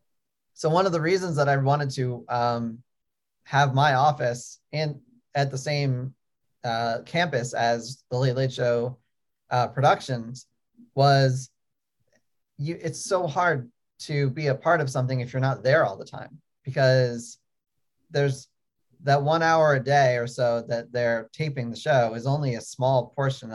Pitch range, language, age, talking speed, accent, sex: 120-150 Hz, English, 30-49, 160 wpm, American, male